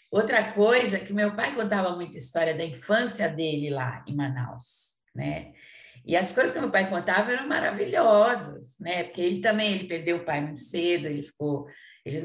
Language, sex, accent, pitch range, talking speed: Portuguese, female, Brazilian, 155-215 Hz, 185 wpm